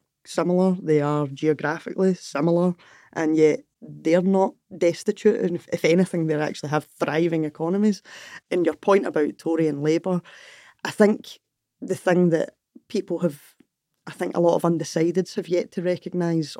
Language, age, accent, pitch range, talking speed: English, 20-39, British, 160-190 Hz, 155 wpm